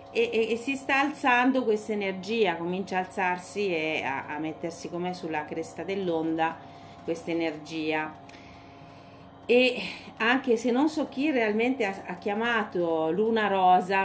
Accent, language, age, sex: native, Italian, 40-59, female